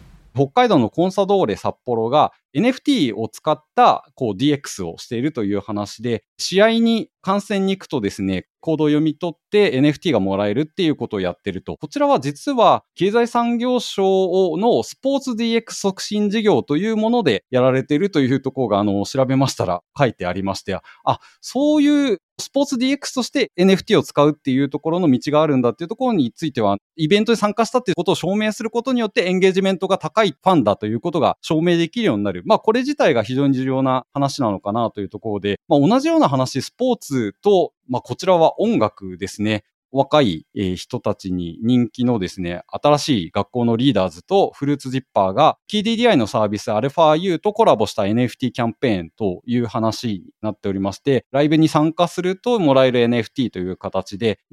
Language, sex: Japanese, male